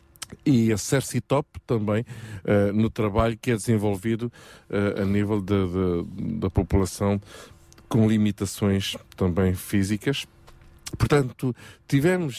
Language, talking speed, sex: Portuguese, 100 wpm, male